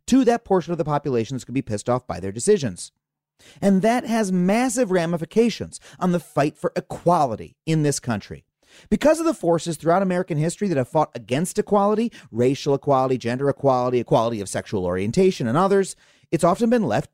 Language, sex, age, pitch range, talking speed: English, male, 30-49, 140-215 Hz, 190 wpm